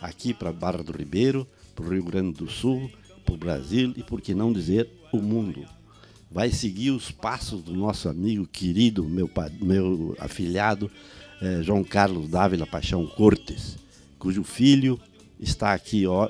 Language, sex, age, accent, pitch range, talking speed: Portuguese, male, 60-79, Brazilian, 95-120 Hz, 160 wpm